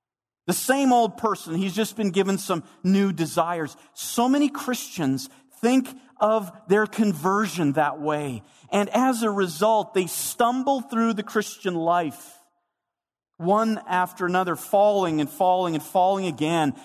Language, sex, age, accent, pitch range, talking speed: English, male, 40-59, American, 165-225 Hz, 140 wpm